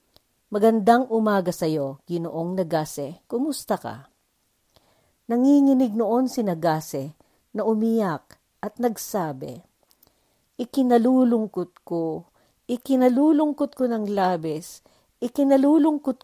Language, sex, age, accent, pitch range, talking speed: Filipino, female, 50-69, native, 170-245 Hz, 80 wpm